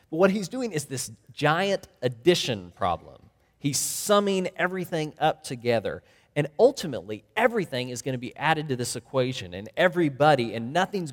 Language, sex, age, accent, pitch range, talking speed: English, male, 30-49, American, 110-155 Hz, 155 wpm